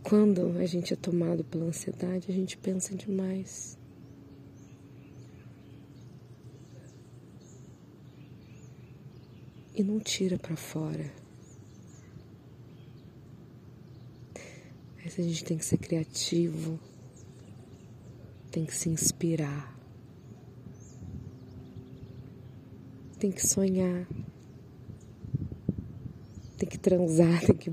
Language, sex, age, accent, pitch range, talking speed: Portuguese, female, 20-39, Brazilian, 125-175 Hz, 75 wpm